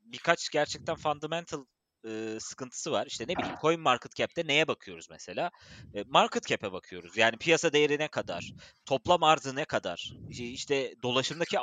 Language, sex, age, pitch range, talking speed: Turkish, male, 30-49, 120-165 Hz, 145 wpm